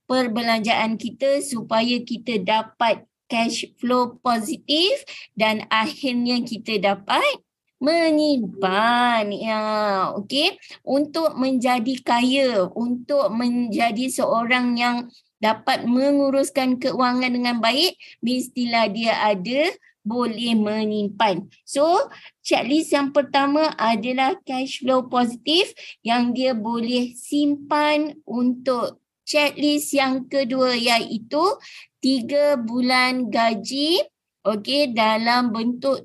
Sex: female